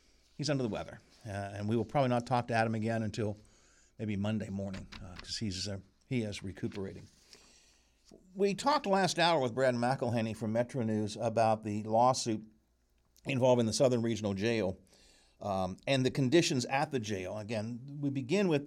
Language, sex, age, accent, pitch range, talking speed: English, male, 60-79, American, 105-140 Hz, 165 wpm